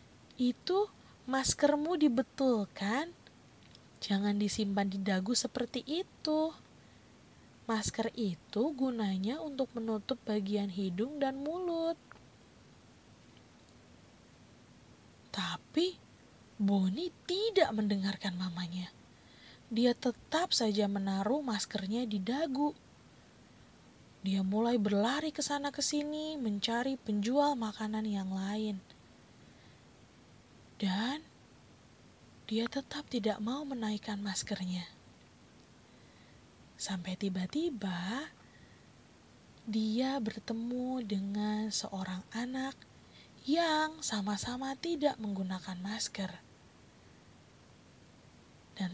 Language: Indonesian